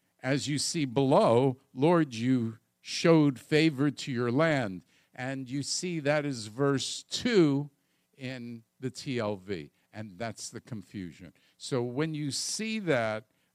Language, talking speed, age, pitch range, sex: English, 135 wpm, 50-69, 115-165 Hz, male